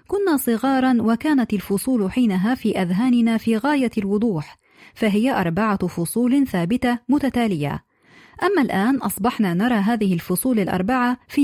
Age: 30-49